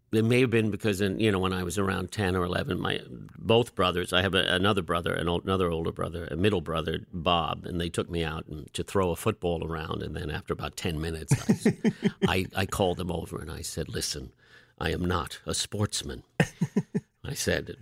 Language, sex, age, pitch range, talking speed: English, male, 50-69, 85-120 Hz, 220 wpm